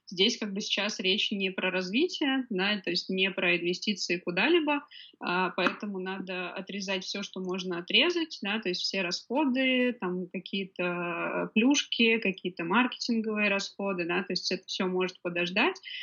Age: 20-39